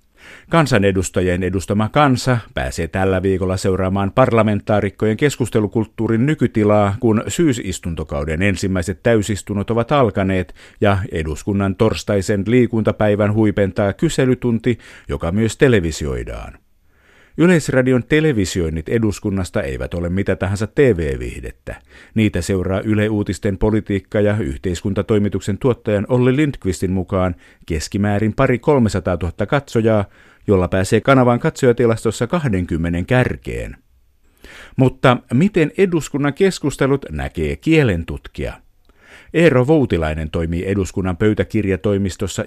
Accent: native